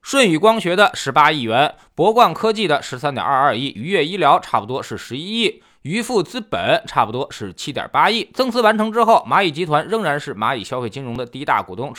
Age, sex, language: 20-39, male, Chinese